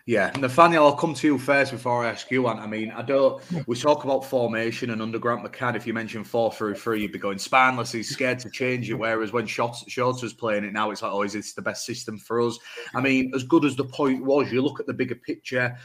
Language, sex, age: English, male, 30-49